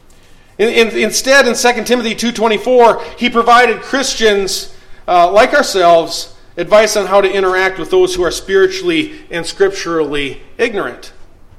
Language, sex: English, male